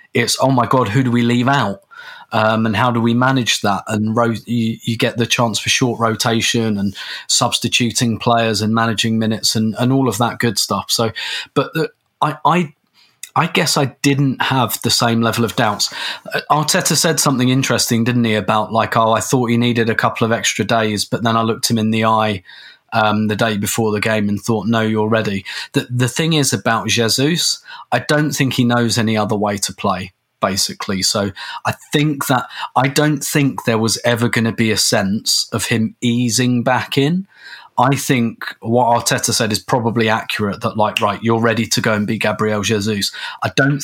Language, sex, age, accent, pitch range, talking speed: English, male, 20-39, British, 110-125 Hz, 205 wpm